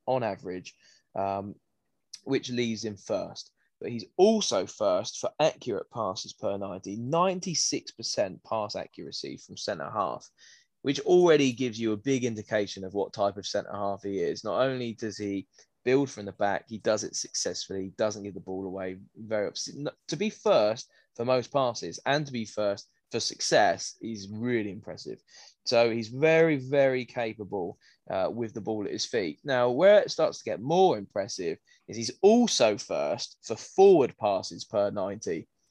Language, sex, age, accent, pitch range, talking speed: English, male, 10-29, British, 105-140 Hz, 170 wpm